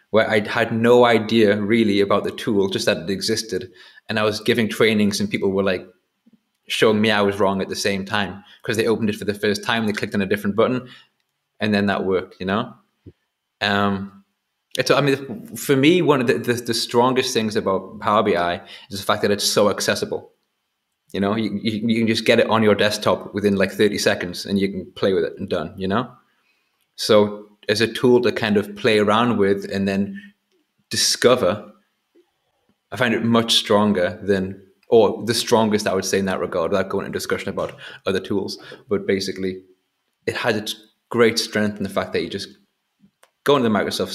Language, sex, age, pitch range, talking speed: English, male, 20-39, 100-115 Hz, 210 wpm